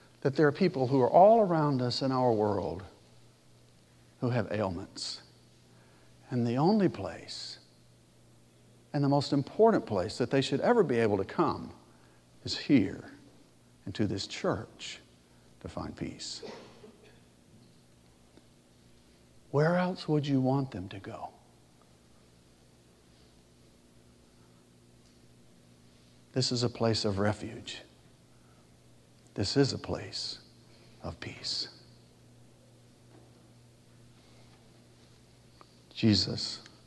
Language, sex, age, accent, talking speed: English, male, 60-79, American, 100 wpm